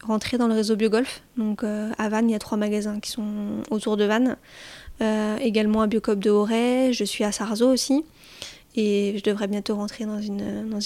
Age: 20-39